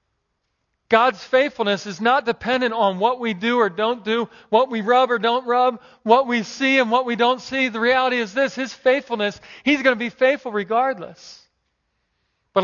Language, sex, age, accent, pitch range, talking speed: English, male, 40-59, American, 190-260 Hz, 185 wpm